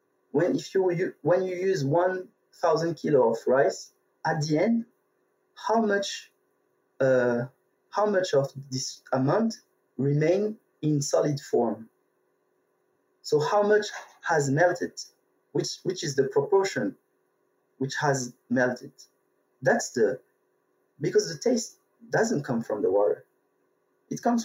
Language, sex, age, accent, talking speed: English, male, 30-49, French, 125 wpm